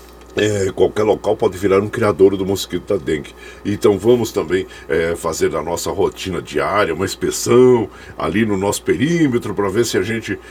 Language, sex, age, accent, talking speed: Portuguese, male, 60-79, Brazilian, 165 wpm